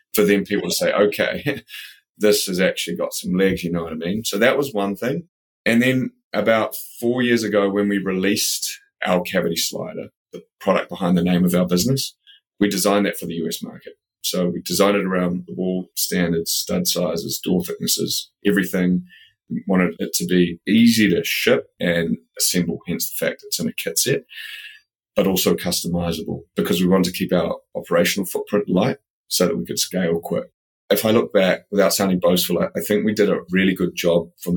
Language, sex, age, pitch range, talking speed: English, male, 30-49, 85-105 Hz, 200 wpm